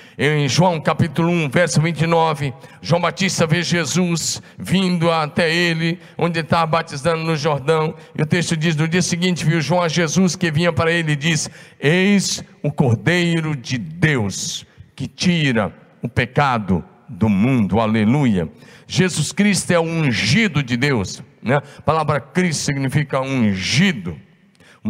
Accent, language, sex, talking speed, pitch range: Brazilian, Portuguese, male, 145 wpm, 145-180 Hz